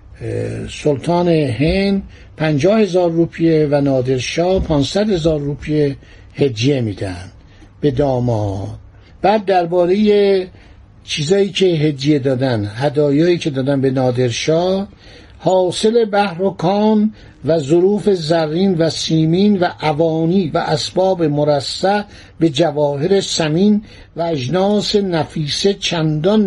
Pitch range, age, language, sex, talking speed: 145-195 Hz, 60-79, Persian, male, 100 wpm